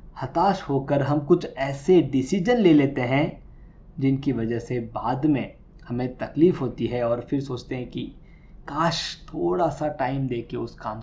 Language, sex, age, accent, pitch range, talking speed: Hindi, male, 20-39, native, 135-180 Hz, 165 wpm